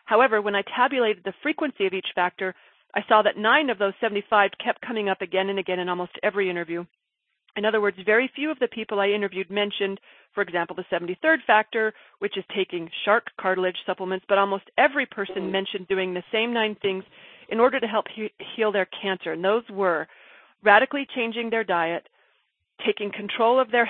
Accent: American